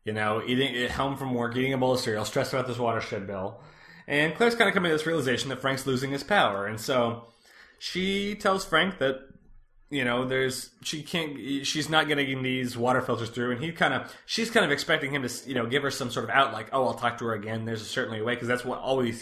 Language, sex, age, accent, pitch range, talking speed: English, male, 20-39, American, 115-155 Hz, 255 wpm